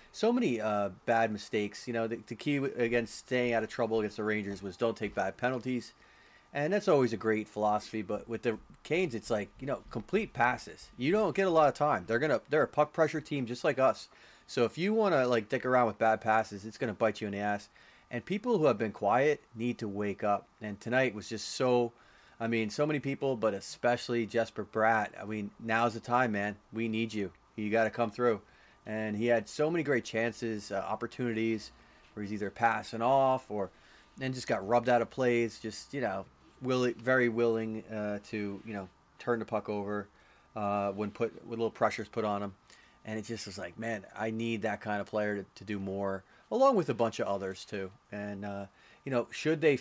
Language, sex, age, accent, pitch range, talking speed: English, male, 30-49, American, 105-120 Hz, 225 wpm